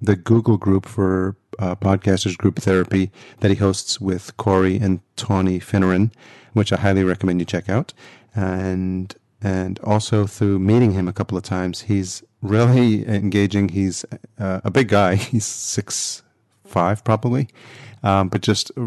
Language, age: English, 30-49